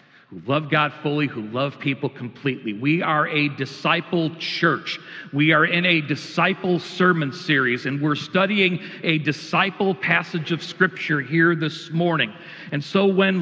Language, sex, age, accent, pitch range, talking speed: English, male, 40-59, American, 155-195 Hz, 150 wpm